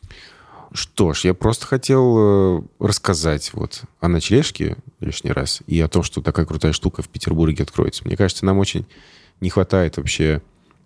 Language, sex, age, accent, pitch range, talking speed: Russian, male, 20-39, native, 80-95 Hz, 155 wpm